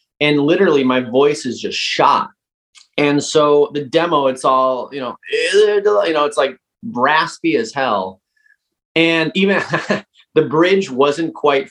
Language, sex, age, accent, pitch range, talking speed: English, male, 30-49, American, 125-200 Hz, 145 wpm